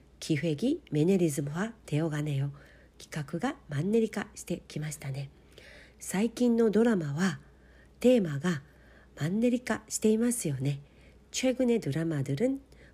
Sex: female